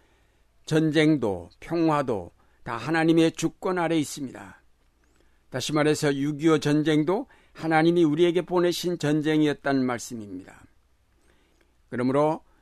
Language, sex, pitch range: Korean, male, 120-155 Hz